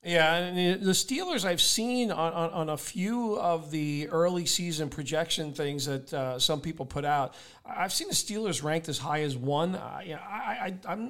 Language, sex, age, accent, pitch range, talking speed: English, male, 40-59, American, 155-180 Hz, 205 wpm